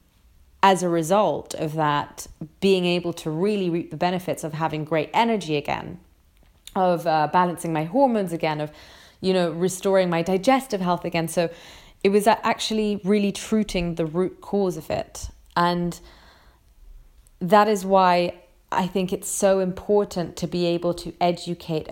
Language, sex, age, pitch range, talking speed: English, female, 30-49, 160-190 Hz, 155 wpm